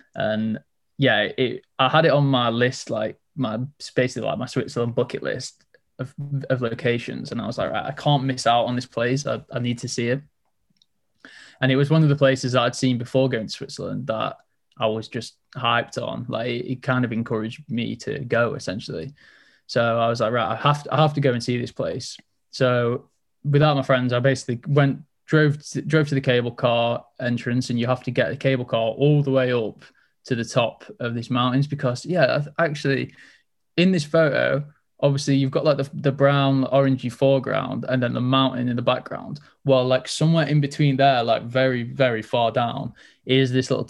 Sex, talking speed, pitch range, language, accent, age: male, 210 wpm, 120-140 Hz, English, British, 20-39